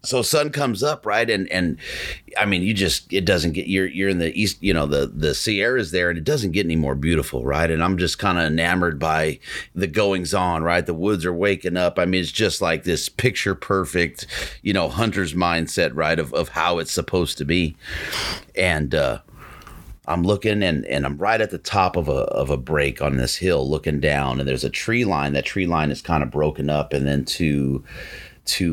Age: 30-49